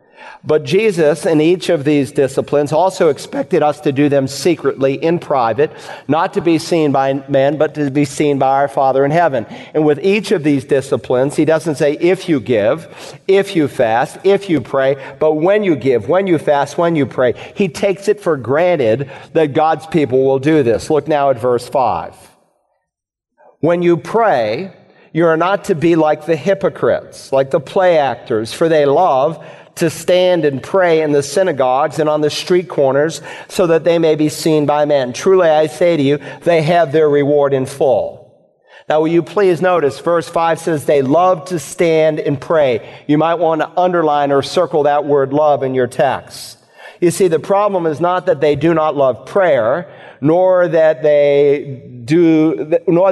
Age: 50-69